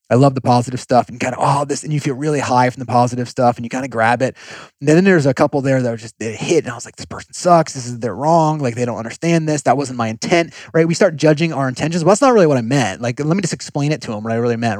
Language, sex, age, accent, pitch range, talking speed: English, male, 30-49, American, 115-145 Hz, 330 wpm